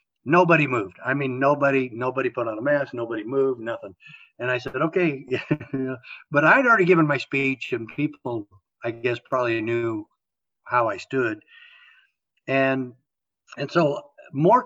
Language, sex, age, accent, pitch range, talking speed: English, male, 60-79, American, 125-165 Hz, 145 wpm